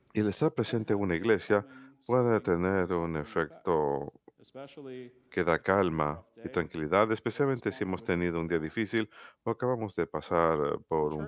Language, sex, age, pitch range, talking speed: Spanish, male, 50-69, 85-120 Hz, 155 wpm